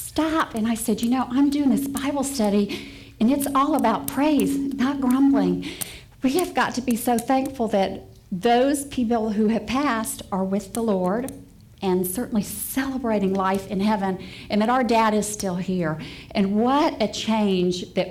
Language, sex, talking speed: English, female, 175 wpm